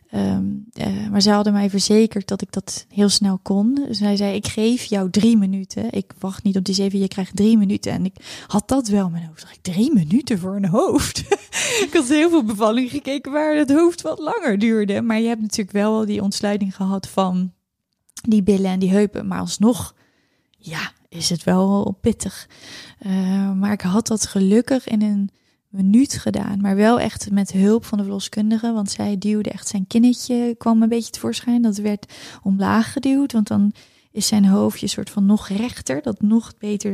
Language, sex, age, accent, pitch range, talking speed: Dutch, female, 20-39, Dutch, 195-230 Hz, 195 wpm